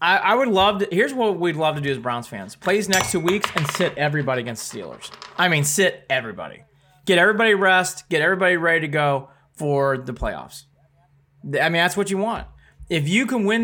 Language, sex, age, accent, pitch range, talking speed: English, male, 30-49, American, 135-185 Hz, 210 wpm